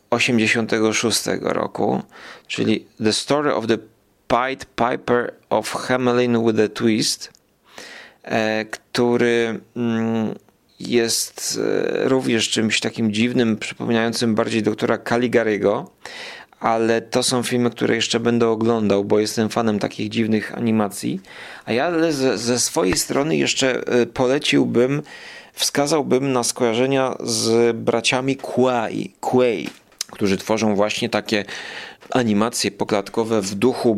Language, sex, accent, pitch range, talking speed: Polish, male, native, 110-120 Hz, 110 wpm